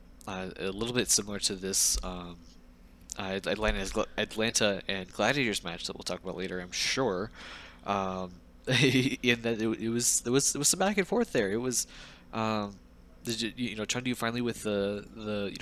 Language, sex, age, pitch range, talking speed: English, male, 20-39, 85-110 Hz, 180 wpm